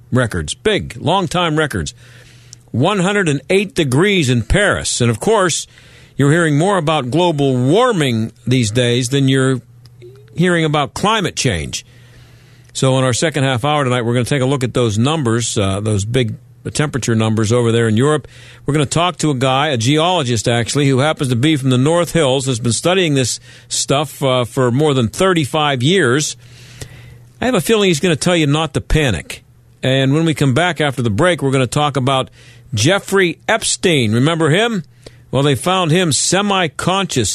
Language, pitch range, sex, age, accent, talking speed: English, 120-165 Hz, male, 50-69, American, 180 wpm